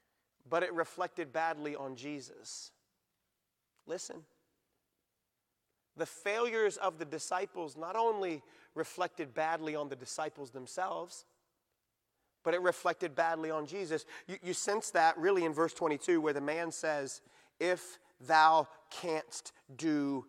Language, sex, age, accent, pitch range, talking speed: English, male, 30-49, American, 165-205 Hz, 125 wpm